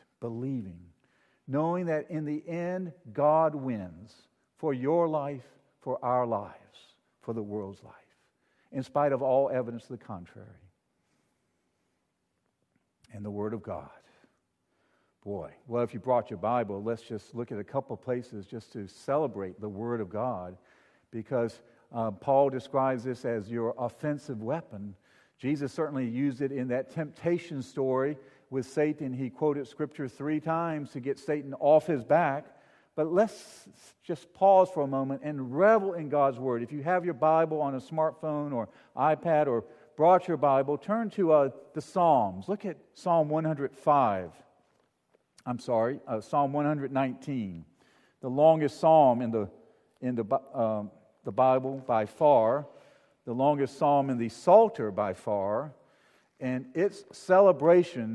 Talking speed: 150 wpm